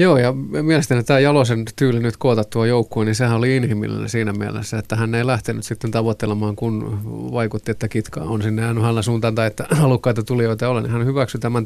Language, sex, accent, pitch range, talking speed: Finnish, male, native, 115-125 Hz, 205 wpm